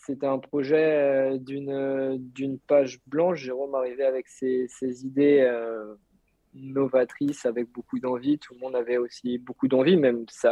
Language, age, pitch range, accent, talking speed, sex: French, 20-39, 115-135 Hz, French, 155 wpm, male